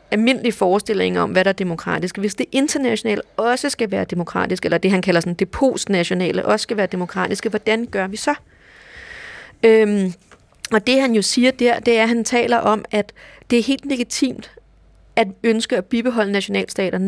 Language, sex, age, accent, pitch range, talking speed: Danish, female, 30-49, native, 200-245 Hz, 185 wpm